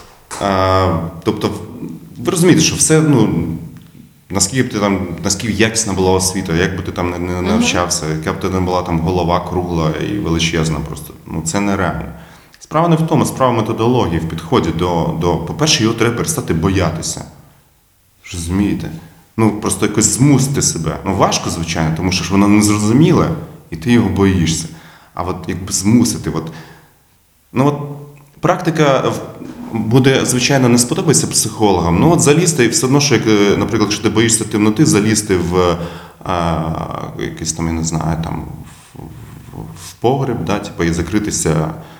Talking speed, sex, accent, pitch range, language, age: 145 wpm, male, native, 90-135 Hz, Ukrainian, 30-49